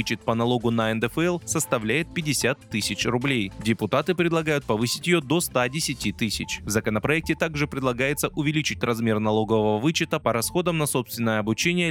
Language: Russian